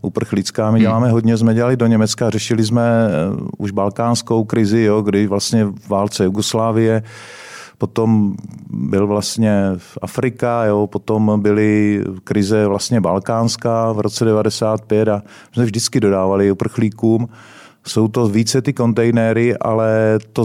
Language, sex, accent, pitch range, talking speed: Czech, male, native, 105-115 Hz, 130 wpm